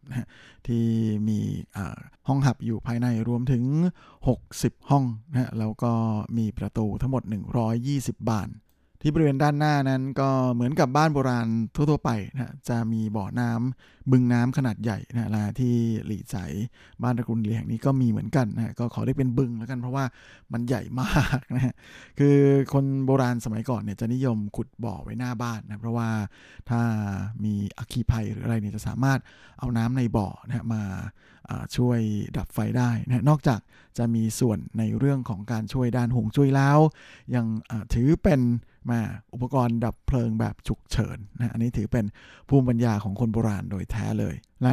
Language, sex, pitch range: Thai, male, 110-130 Hz